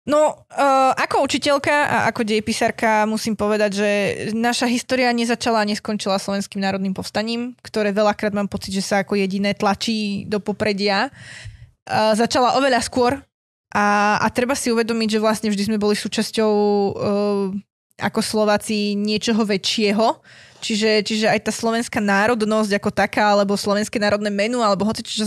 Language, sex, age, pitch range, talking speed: Slovak, female, 20-39, 200-225 Hz, 145 wpm